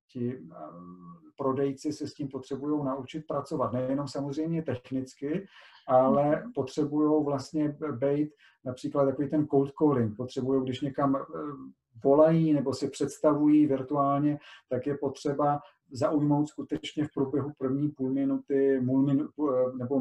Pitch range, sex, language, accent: 125-140 Hz, male, Czech, native